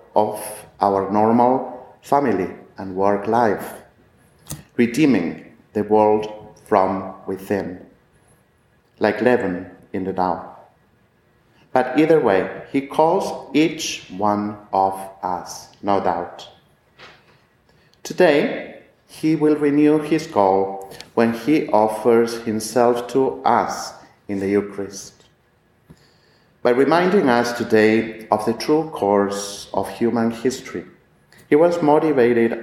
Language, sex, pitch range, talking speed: English, male, 100-125 Hz, 105 wpm